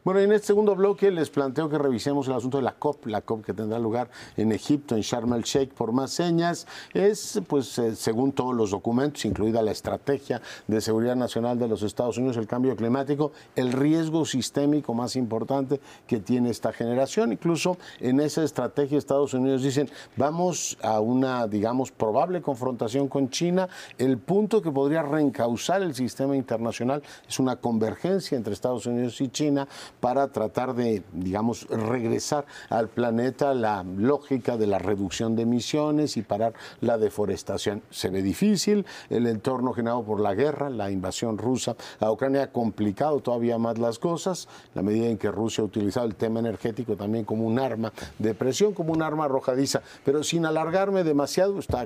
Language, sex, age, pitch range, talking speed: Spanish, male, 50-69, 115-145 Hz, 175 wpm